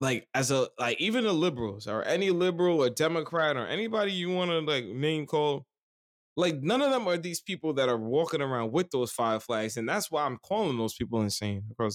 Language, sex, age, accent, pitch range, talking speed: English, male, 20-39, American, 115-160 Hz, 220 wpm